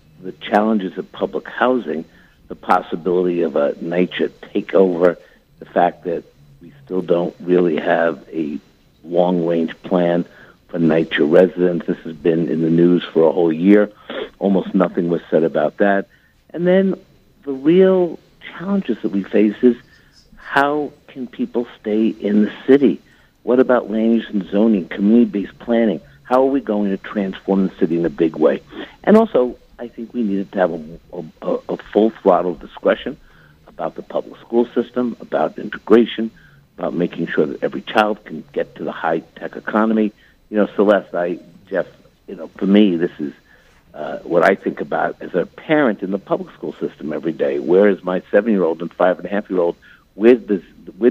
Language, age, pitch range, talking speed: English, 60-79, 90-120 Hz, 170 wpm